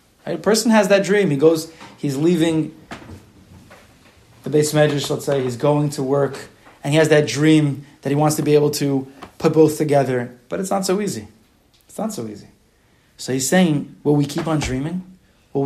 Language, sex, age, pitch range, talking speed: English, male, 20-39, 125-160 Hz, 195 wpm